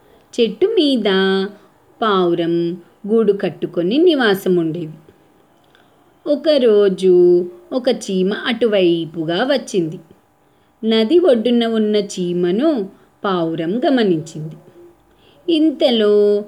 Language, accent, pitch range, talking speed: Telugu, native, 180-255 Hz, 70 wpm